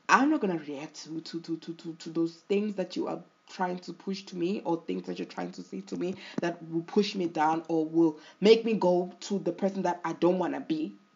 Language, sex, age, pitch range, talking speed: English, female, 20-39, 170-220 Hz, 250 wpm